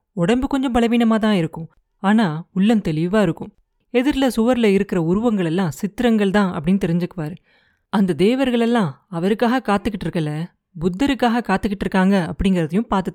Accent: native